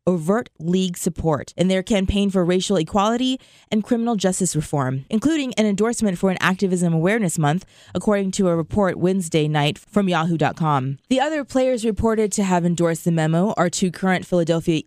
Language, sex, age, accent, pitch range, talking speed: English, female, 20-39, American, 165-210 Hz, 170 wpm